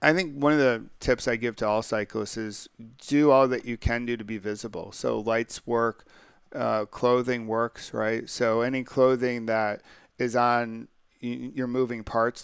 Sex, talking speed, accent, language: male, 180 wpm, American, English